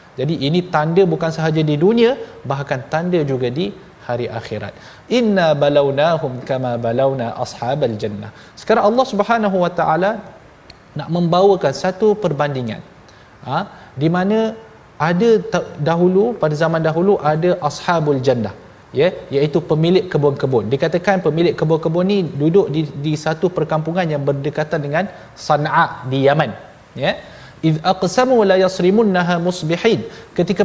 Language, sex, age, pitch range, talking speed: Malayalam, male, 30-49, 145-195 Hz, 130 wpm